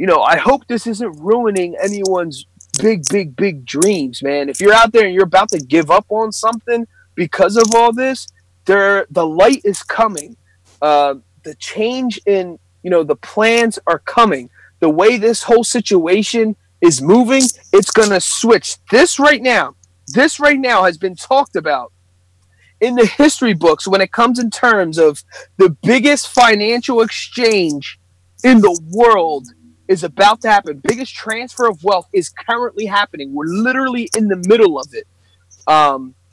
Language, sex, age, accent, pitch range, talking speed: English, male, 30-49, American, 160-235 Hz, 165 wpm